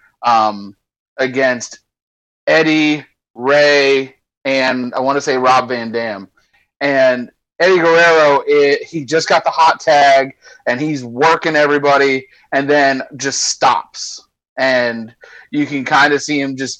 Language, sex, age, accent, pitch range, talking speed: English, male, 30-49, American, 125-150 Hz, 135 wpm